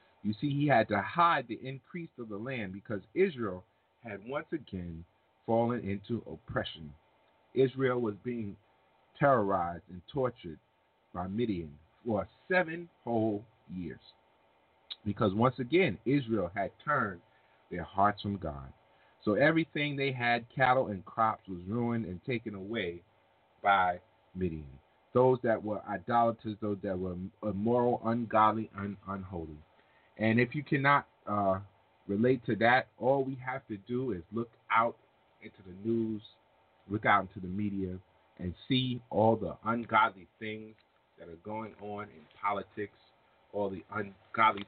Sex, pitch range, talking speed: male, 95-120 Hz, 140 wpm